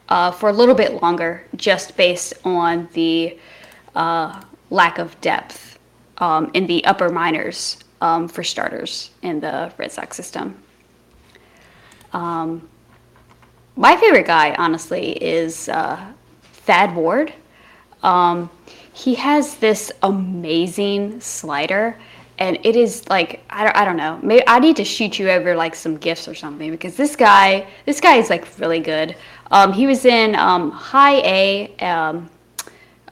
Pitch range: 170-210 Hz